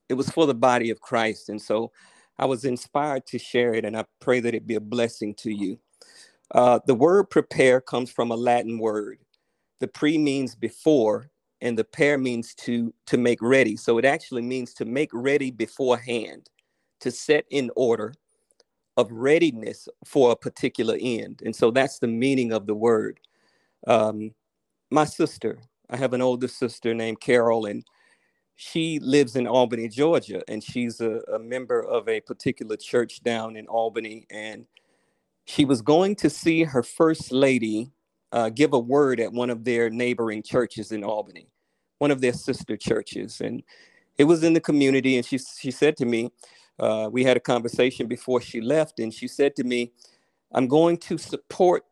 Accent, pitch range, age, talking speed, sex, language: American, 115-140 Hz, 40-59, 180 wpm, male, English